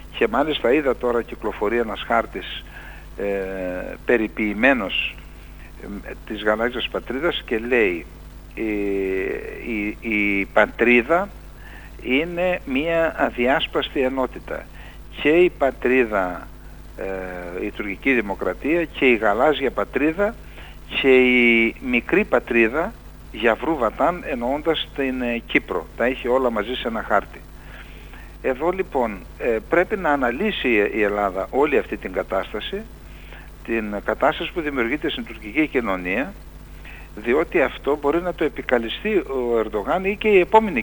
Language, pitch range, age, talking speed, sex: Greek, 105-165 Hz, 60-79, 115 wpm, male